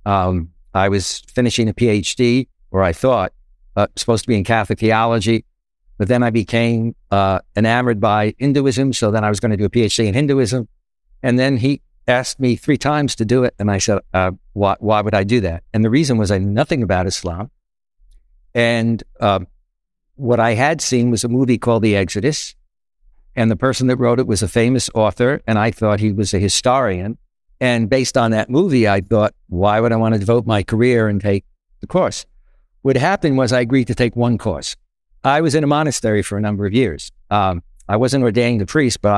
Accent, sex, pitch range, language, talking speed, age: American, male, 105-130 Hz, English, 215 wpm, 60-79